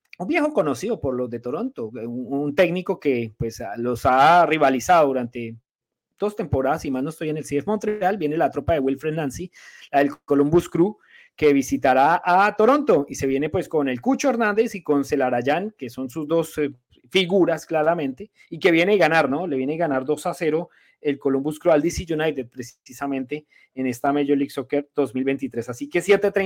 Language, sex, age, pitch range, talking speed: Spanish, male, 30-49, 140-195 Hz, 195 wpm